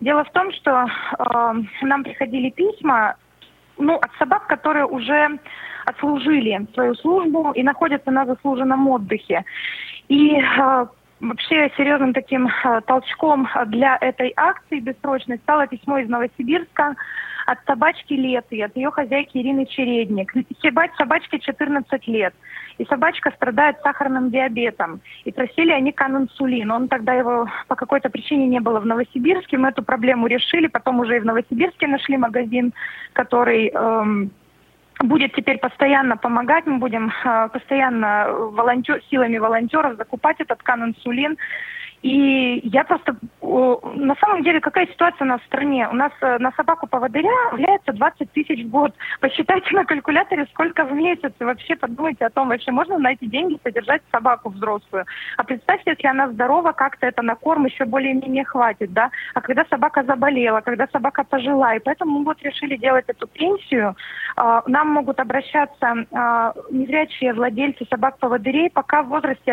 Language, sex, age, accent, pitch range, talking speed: Russian, female, 20-39, native, 245-300 Hz, 145 wpm